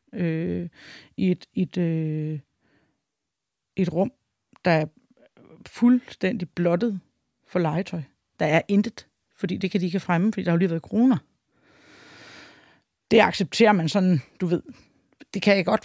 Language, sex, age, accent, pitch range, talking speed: Danish, female, 30-49, native, 165-200 Hz, 150 wpm